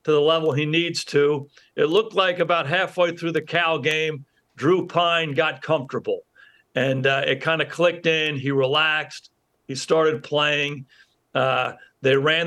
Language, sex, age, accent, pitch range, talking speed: English, male, 50-69, American, 145-170 Hz, 165 wpm